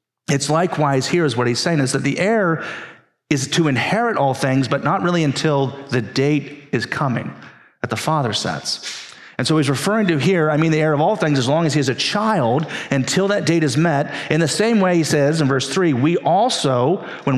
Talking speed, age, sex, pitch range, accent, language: 225 wpm, 40-59, male, 135-170 Hz, American, English